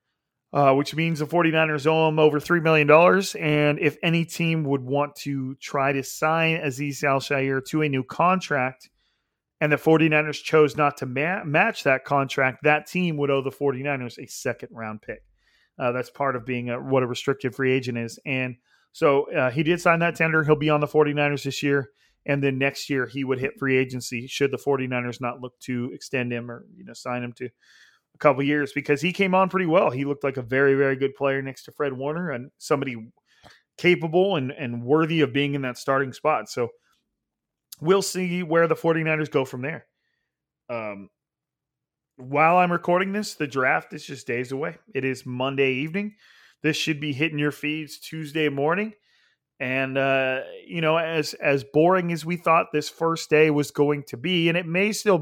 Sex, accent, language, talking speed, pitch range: male, American, English, 195 wpm, 135-160 Hz